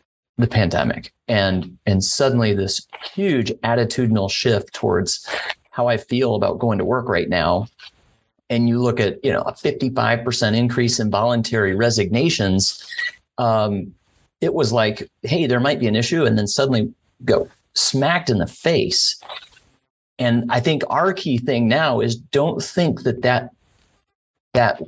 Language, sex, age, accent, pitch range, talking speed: English, male, 30-49, American, 110-130 Hz, 150 wpm